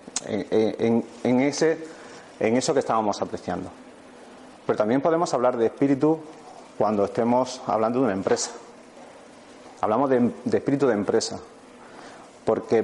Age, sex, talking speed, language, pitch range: 30-49, male, 130 wpm, Spanish, 115-140 Hz